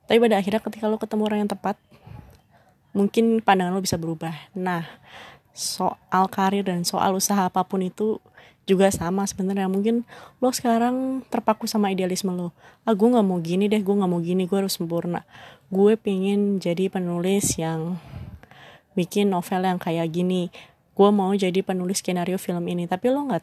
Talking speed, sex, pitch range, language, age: 165 wpm, female, 180-215 Hz, Indonesian, 20-39